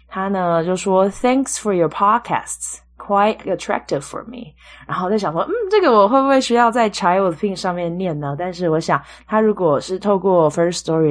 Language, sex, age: Chinese, female, 20-39